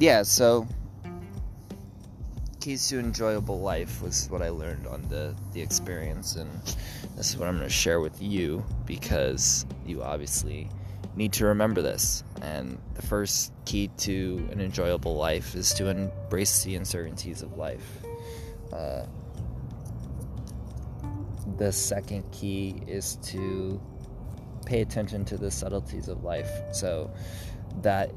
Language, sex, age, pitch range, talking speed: English, male, 20-39, 90-105 Hz, 130 wpm